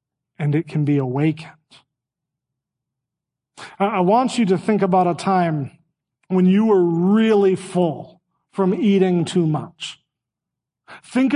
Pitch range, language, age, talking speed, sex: 180-240 Hz, English, 40-59, 120 wpm, male